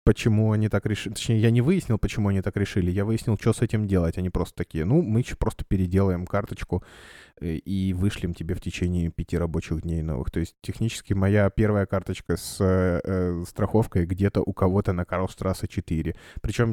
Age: 20-39